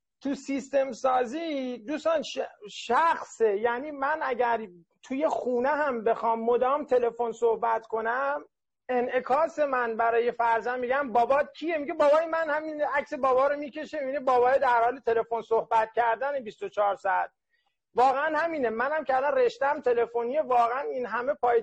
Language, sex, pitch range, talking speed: Persian, male, 225-285 Hz, 145 wpm